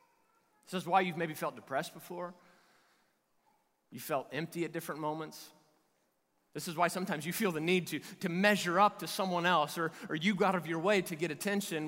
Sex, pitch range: male, 175-220 Hz